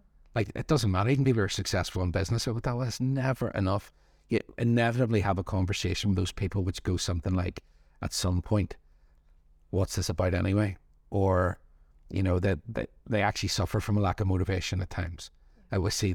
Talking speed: 200 wpm